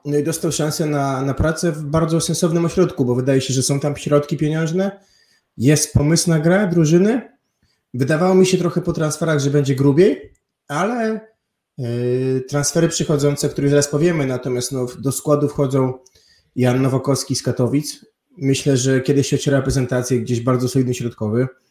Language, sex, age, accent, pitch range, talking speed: Polish, male, 20-39, native, 130-150 Hz, 160 wpm